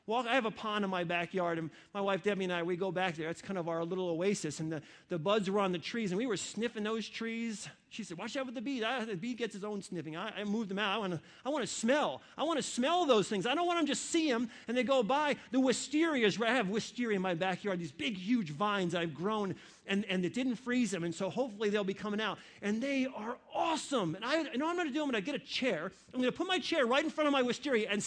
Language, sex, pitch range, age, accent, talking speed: English, male, 205-290 Hz, 40-59, American, 290 wpm